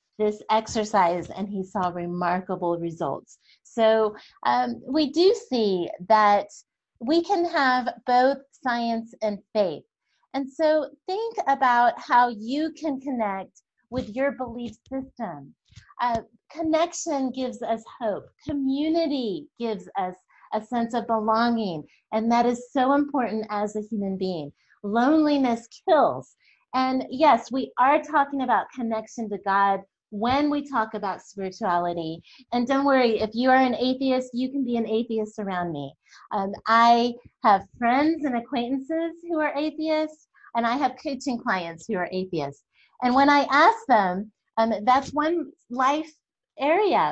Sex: female